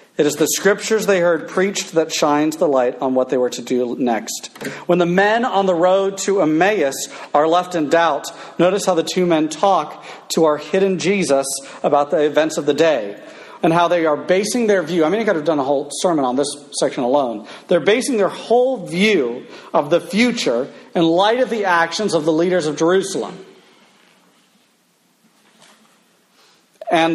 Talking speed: 190 wpm